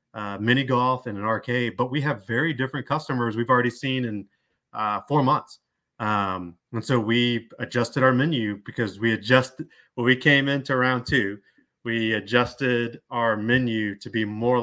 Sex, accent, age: male, American, 30-49